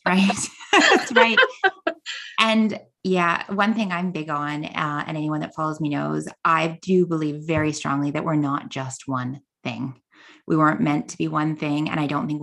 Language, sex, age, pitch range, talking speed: English, female, 20-39, 155-190 Hz, 190 wpm